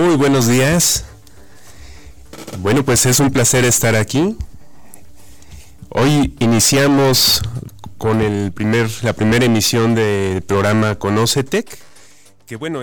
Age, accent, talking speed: 30-49, Mexican, 110 wpm